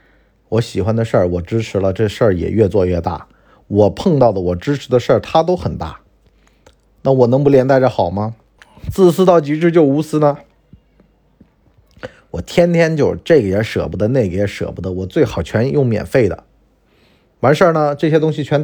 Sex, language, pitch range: male, Chinese, 105-150 Hz